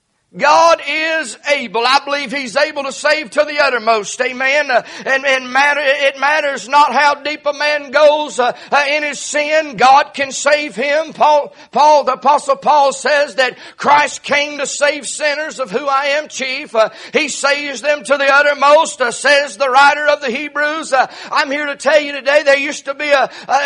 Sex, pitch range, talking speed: male, 275-305 Hz, 195 wpm